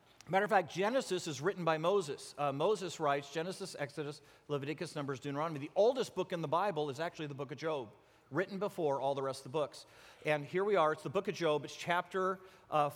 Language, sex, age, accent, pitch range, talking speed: English, male, 40-59, American, 150-190 Hz, 220 wpm